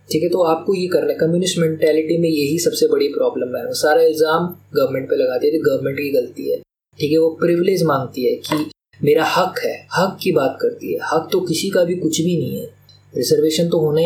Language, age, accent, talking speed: Hindi, 20-39, native, 130 wpm